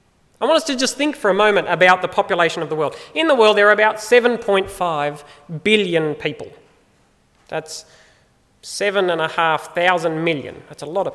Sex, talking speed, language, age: male, 165 wpm, English, 30-49